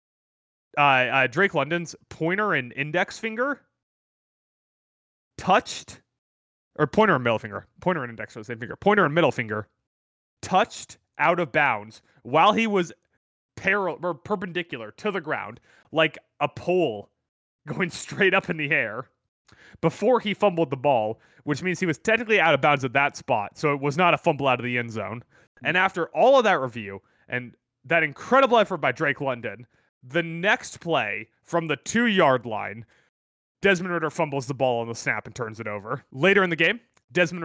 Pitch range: 125-180 Hz